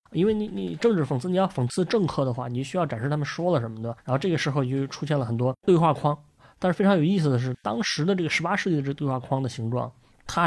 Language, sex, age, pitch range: Chinese, male, 20-39, 130-165 Hz